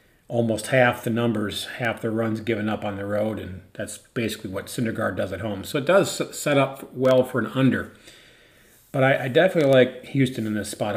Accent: American